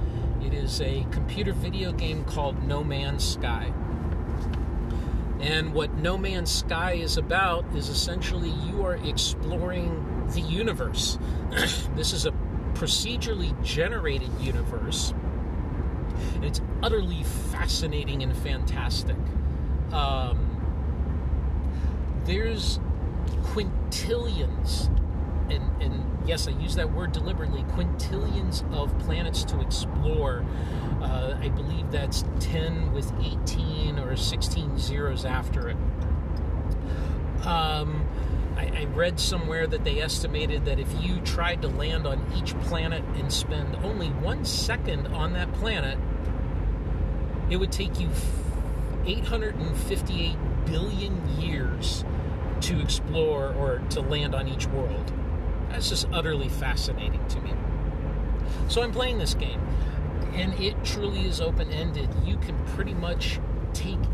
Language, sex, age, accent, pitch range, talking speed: English, male, 40-59, American, 70-80 Hz, 115 wpm